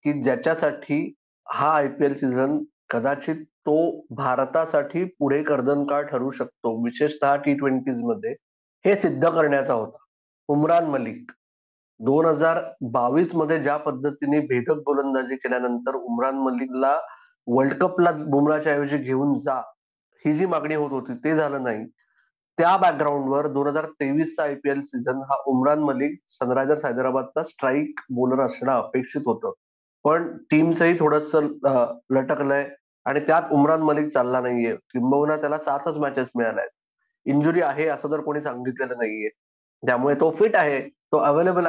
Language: Marathi